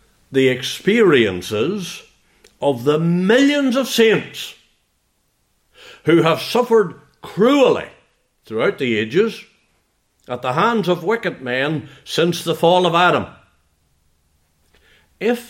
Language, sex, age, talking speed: English, male, 60-79, 100 wpm